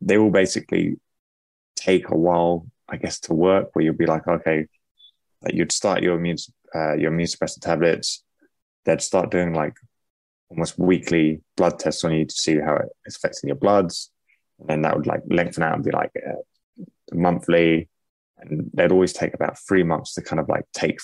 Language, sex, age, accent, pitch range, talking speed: English, male, 20-39, British, 75-90 Hz, 190 wpm